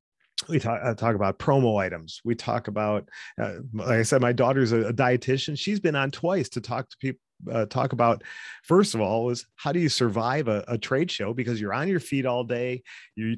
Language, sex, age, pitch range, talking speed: English, male, 40-59, 105-130 Hz, 225 wpm